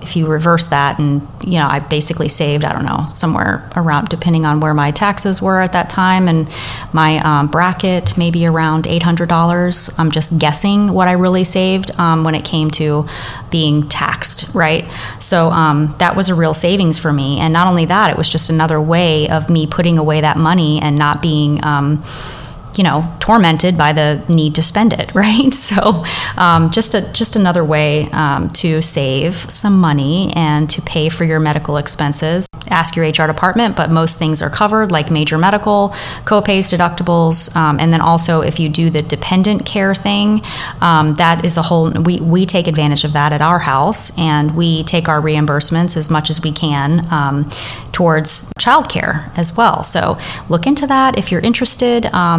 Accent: American